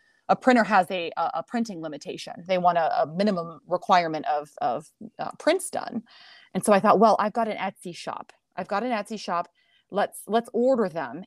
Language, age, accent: English, 30-49, American